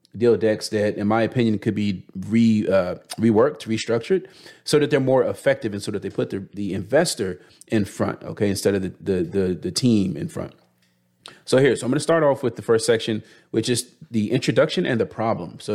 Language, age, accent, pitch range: English, 30-49, American, 100-125 Hz